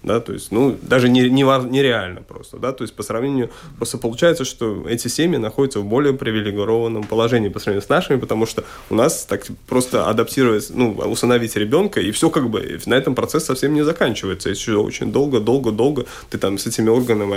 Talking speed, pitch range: 200 wpm, 105-125 Hz